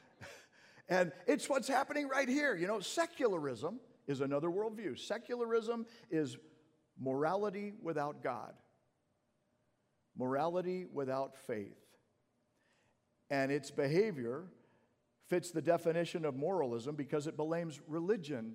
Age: 50-69